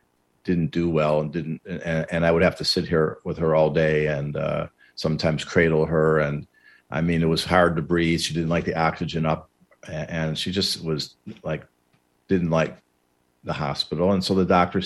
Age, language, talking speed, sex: 50-69, English, 200 wpm, male